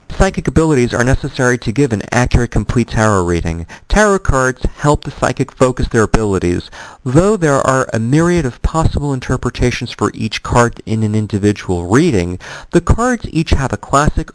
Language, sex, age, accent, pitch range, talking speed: English, male, 50-69, American, 105-145 Hz, 165 wpm